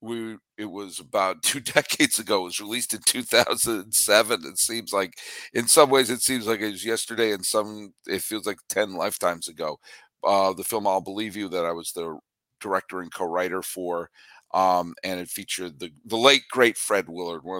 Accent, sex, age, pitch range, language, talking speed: American, male, 50-69, 90-115 Hz, English, 190 wpm